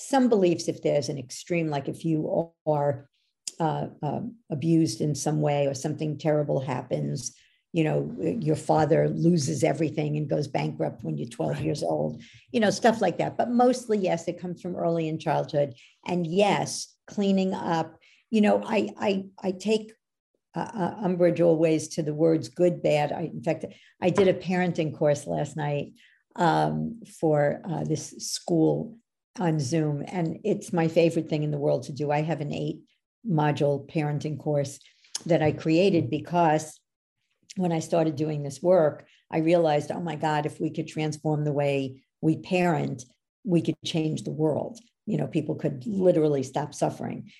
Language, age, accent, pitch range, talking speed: English, 60-79, American, 150-180 Hz, 170 wpm